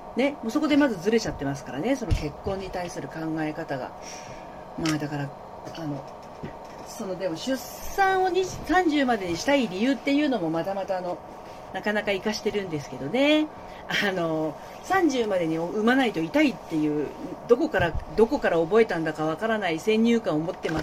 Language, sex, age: Japanese, female, 40-59